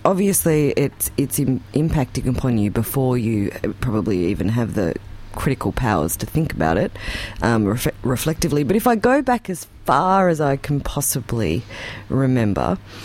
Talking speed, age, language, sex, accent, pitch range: 145 wpm, 30-49, English, female, Australian, 105-145 Hz